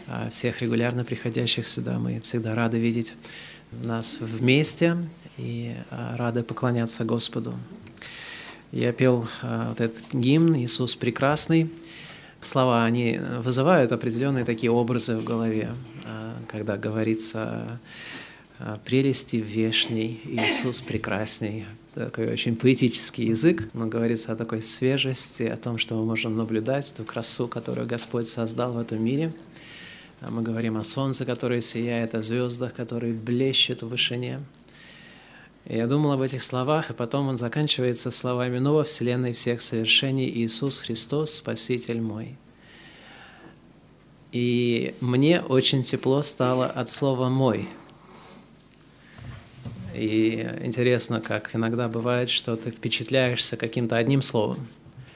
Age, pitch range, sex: 30-49, 115-130 Hz, male